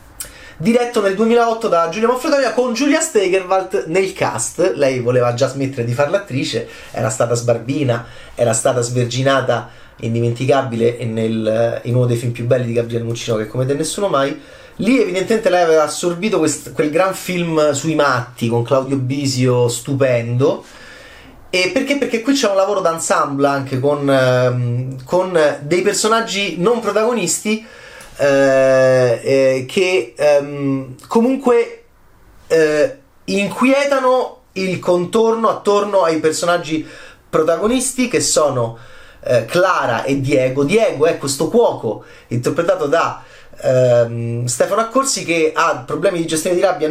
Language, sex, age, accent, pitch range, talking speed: Italian, male, 30-49, native, 130-210 Hz, 135 wpm